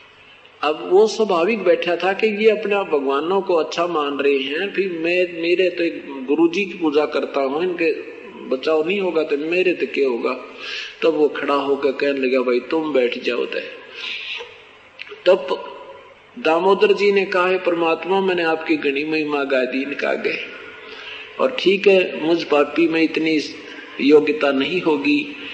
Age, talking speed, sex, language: 50-69, 110 wpm, male, Hindi